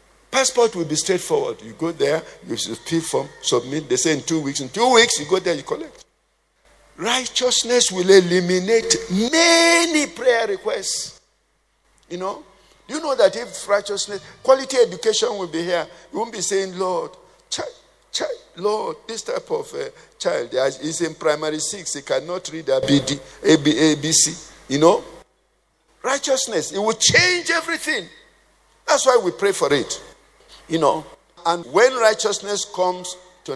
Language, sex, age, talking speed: English, male, 50-69, 155 wpm